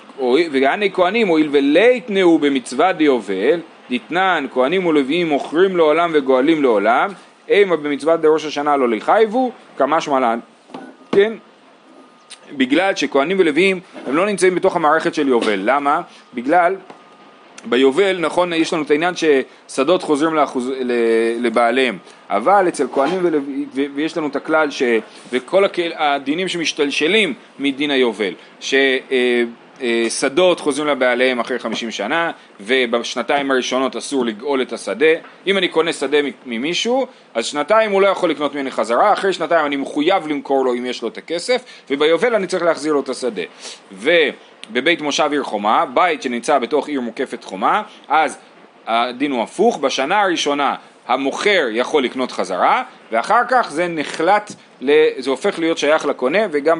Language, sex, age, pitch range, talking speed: Hebrew, male, 30-49, 130-180 Hz, 145 wpm